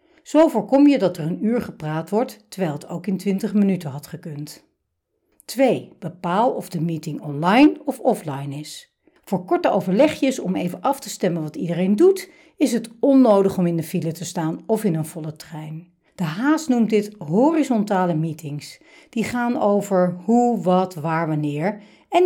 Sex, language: female, Dutch